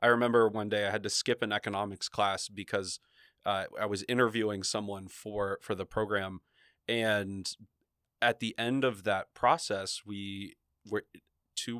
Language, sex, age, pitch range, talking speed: English, male, 20-39, 95-110 Hz, 160 wpm